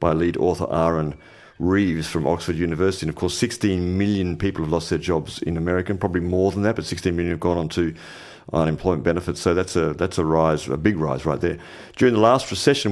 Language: English